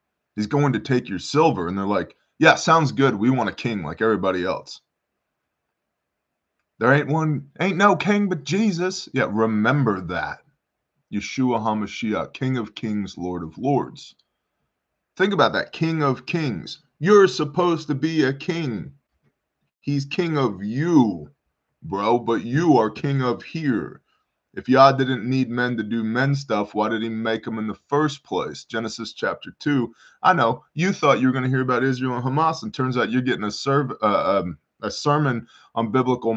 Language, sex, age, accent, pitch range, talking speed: English, male, 20-39, American, 110-145 Hz, 175 wpm